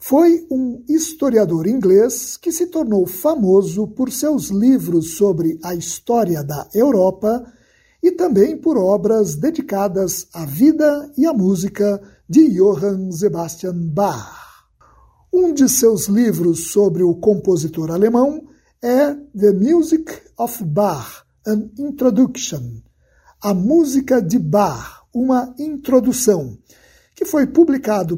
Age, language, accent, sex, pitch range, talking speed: 60-79, Portuguese, Brazilian, male, 195-285 Hz, 115 wpm